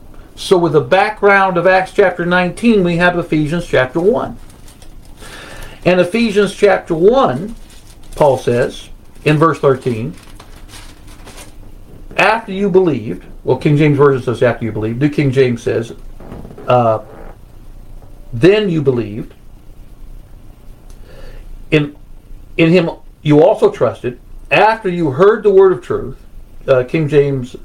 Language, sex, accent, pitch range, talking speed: English, male, American, 125-180 Hz, 125 wpm